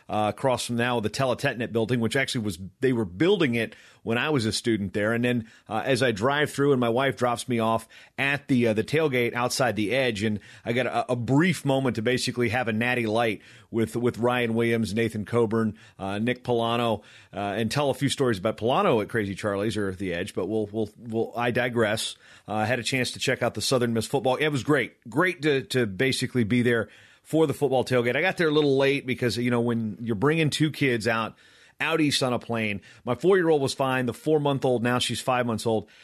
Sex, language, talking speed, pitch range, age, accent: male, English, 240 wpm, 115-135 Hz, 30-49, American